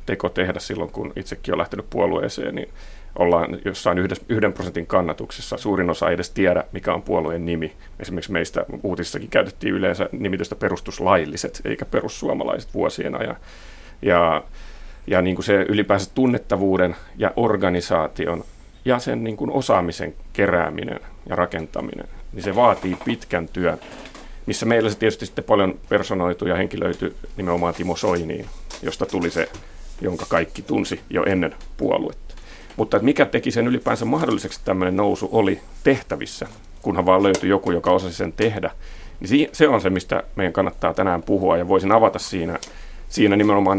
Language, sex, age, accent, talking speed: Finnish, male, 40-59, native, 155 wpm